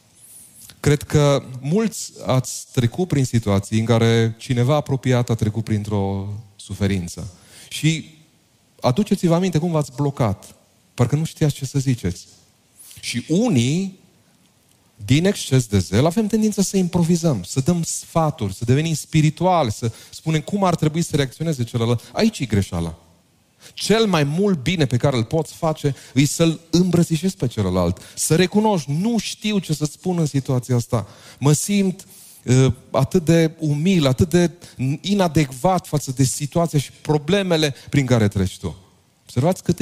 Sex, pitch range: male, 115-165 Hz